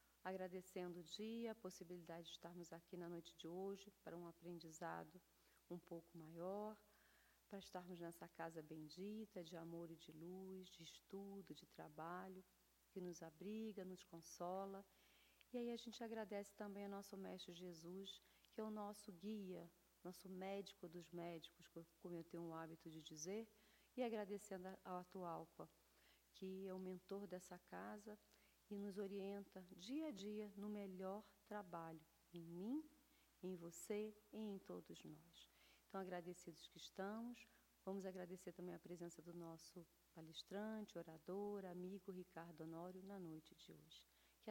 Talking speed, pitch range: 150 wpm, 170-200 Hz